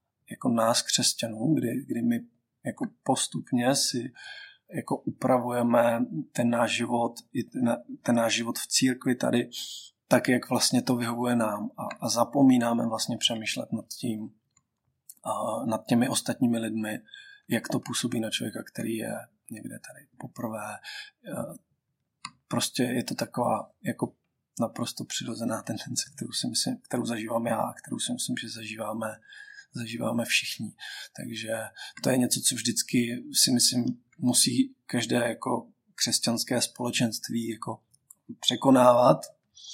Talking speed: 130 wpm